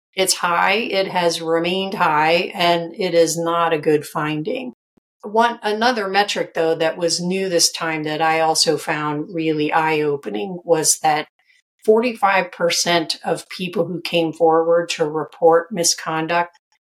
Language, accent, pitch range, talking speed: English, American, 160-195 Hz, 140 wpm